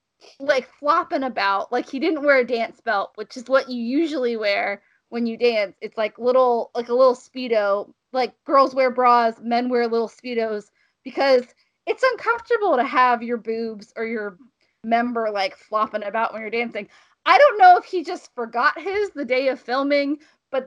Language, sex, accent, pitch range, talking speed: English, female, American, 230-290 Hz, 185 wpm